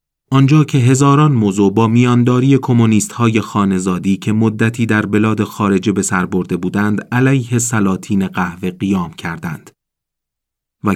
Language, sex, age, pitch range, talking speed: Persian, male, 40-59, 95-125 Hz, 130 wpm